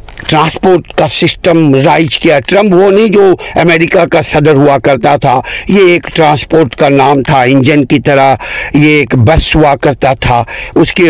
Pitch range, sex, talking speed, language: 140-175 Hz, male, 175 wpm, Urdu